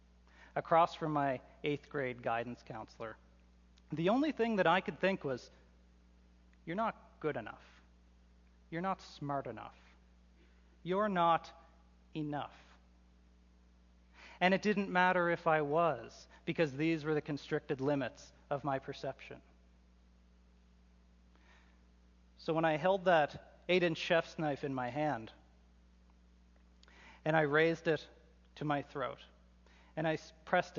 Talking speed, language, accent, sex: 125 wpm, English, American, male